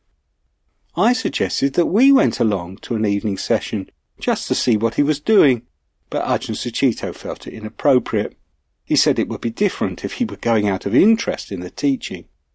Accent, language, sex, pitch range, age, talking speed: British, English, male, 100-135 Hz, 40-59, 185 wpm